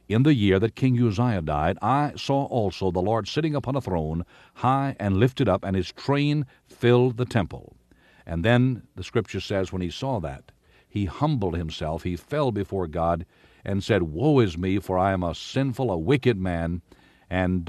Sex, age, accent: male, 60-79, American